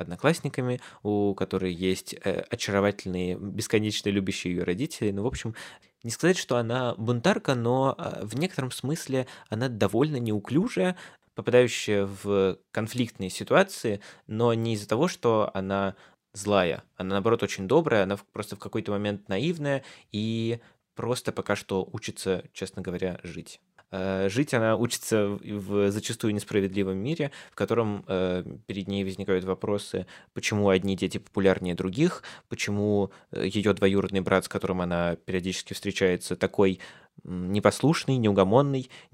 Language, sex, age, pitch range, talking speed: Russian, male, 20-39, 95-115 Hz, 125 wpm